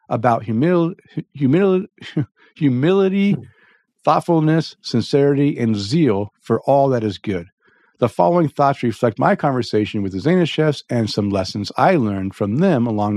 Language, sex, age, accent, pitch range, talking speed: English, male, 50-69, American, 110-150 Hz, 130 wpm